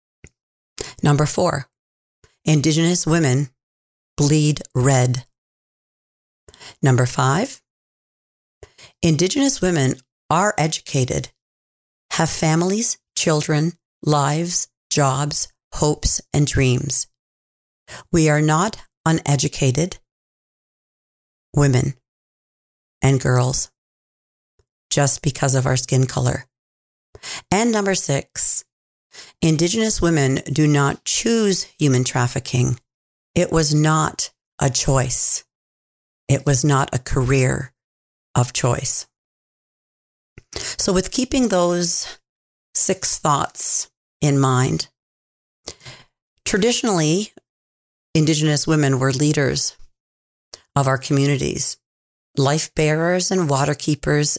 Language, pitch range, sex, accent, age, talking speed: English, 125-160 Hz, female, American, 40-59, 85 wpm